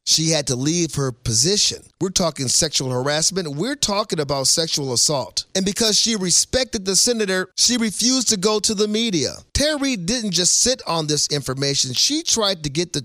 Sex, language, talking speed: male, English, 185 wpm